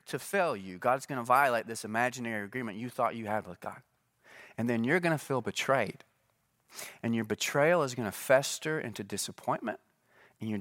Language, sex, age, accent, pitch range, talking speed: English, male, 30-49, American, 120-195 Hz, 175 wpm